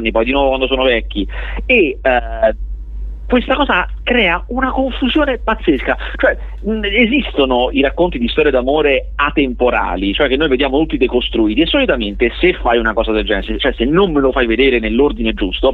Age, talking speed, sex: 40-59, 170 wpm, male